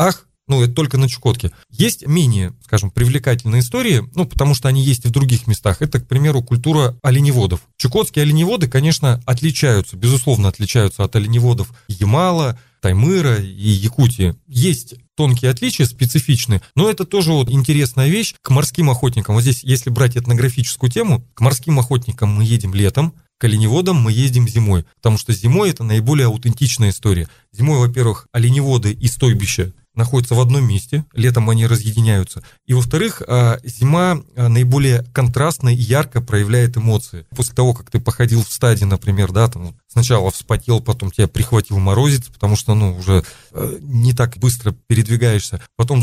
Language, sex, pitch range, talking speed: Russian, male, 115-135 Hz, 155 wpm